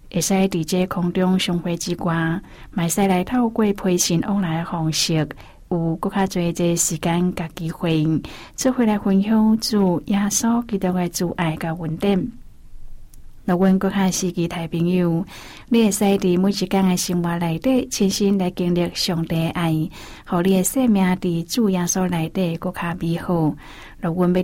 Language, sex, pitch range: Chinese, female, 170-195 Hz